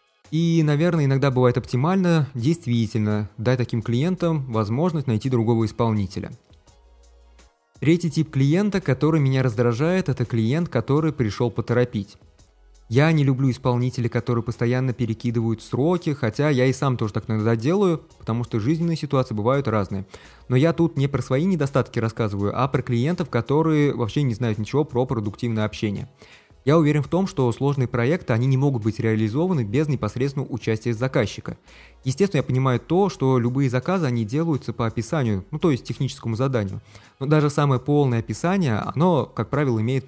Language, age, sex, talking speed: Russian, 20-39, male, 160 wpm